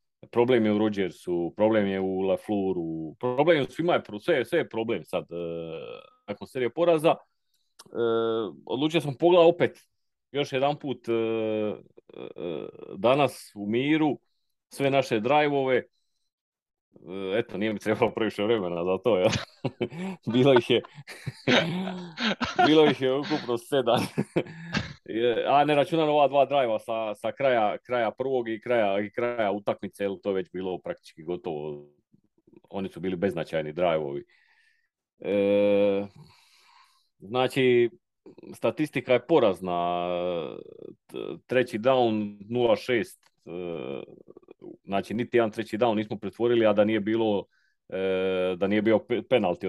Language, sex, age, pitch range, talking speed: Croatian, male, 30-49, 100-140 Hz, 125 wpm